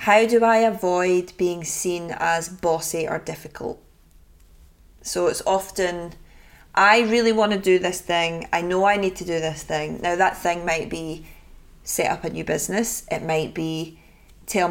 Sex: female